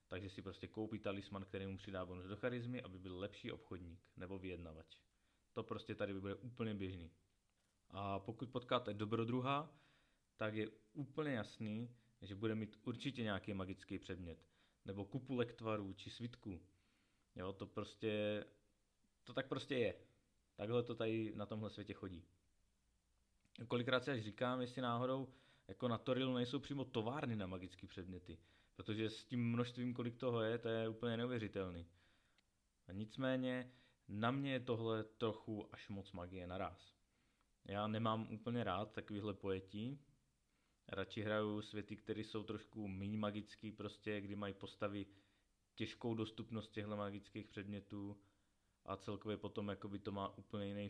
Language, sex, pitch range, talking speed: Czech, male, 95-115 Hz, 145 wpm